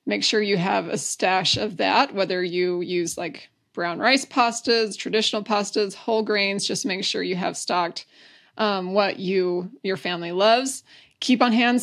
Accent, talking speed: American, 170 wpm